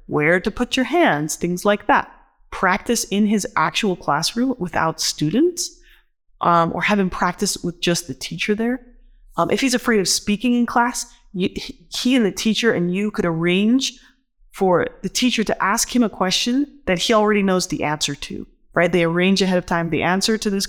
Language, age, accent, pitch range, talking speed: English, 20-39, American, 175-250 Hz, 195 wpm